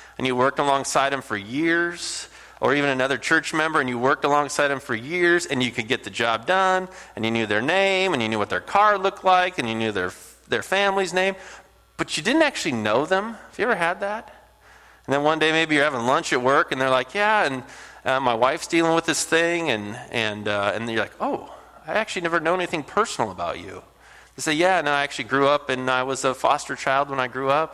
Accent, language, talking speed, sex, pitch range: American, English, 240 wpm, male, 130-190 Hz